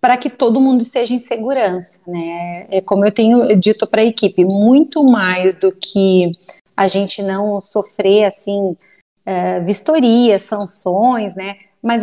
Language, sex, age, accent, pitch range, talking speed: Portuguese, female, 30-49, Brazilian, 195-240 Hz, 145 wpm